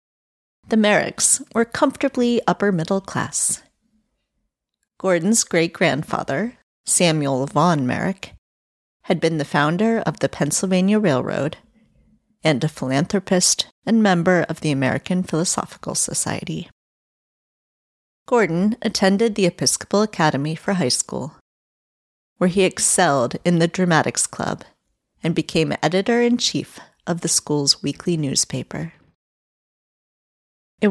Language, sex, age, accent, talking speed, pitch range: English, female, 40-59, American, 105 wpm, 155-205 Hz